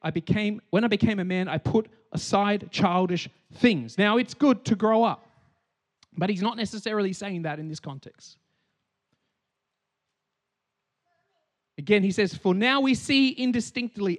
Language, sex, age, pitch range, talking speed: English, male, 30-49, 160-235 Hz, 150 wpm